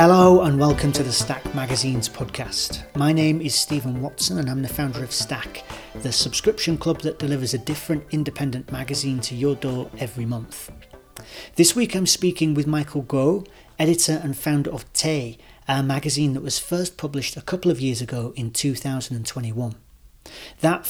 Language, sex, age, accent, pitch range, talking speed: English, male, 40-59, British, 130-155 Hz, 170 wpm